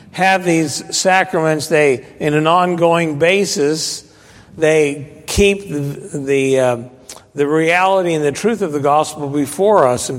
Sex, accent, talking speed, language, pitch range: male, American, 140 wpm, English, 125-165 Hz